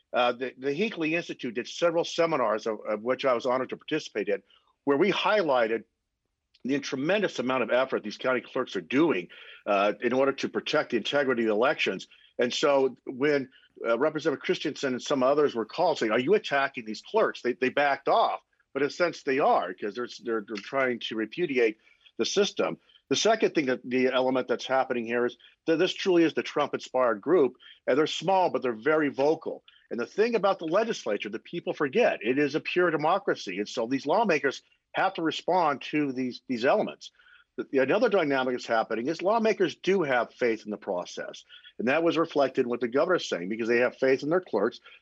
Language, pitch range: English, 125-175 Hz